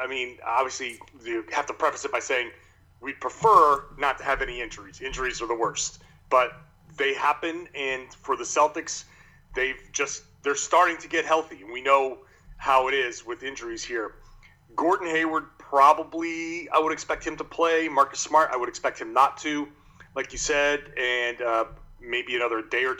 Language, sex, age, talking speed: English, male, 30-49, 185 wpm